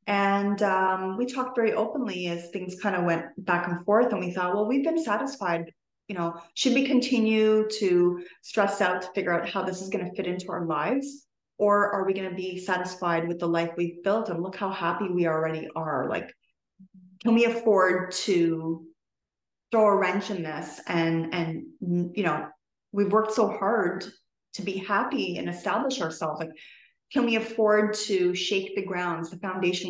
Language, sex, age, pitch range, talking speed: English, female, 30-49, 175-215 Hz, 190 wpm